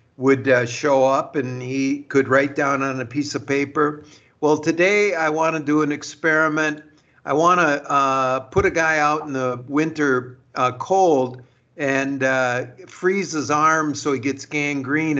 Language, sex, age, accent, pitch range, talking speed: English, male, 50-69, American, 130-160 Hz, 170 wpm